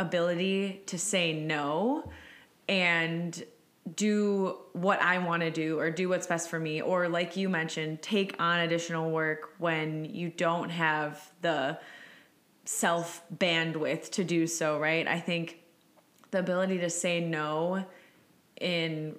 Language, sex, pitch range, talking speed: English, female, 165-195 Hz, 135 wpm